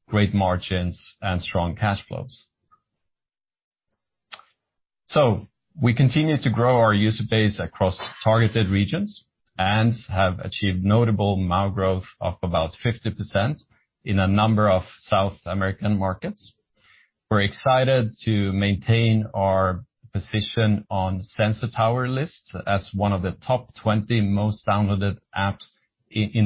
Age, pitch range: 40-59, 100-115 Hz